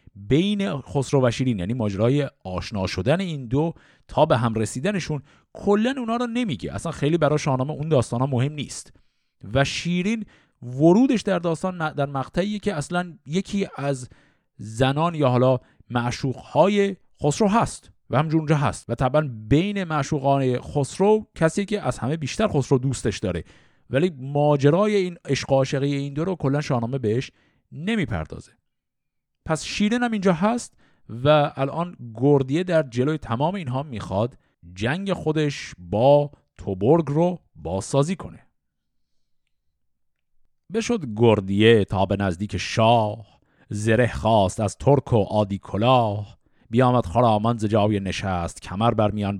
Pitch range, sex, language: 110-155 Hz, male, Persian